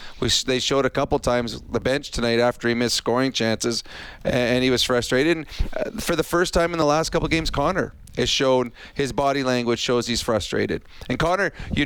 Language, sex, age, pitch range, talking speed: English, male, 40-59, 115-135 Hz, 225 wpm